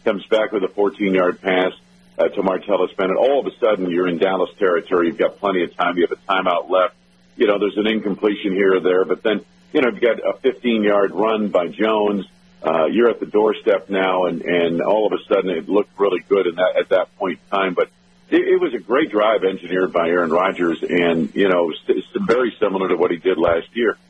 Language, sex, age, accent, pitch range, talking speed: English, male, 50-69, American, 90-115 Hz, 230 wpm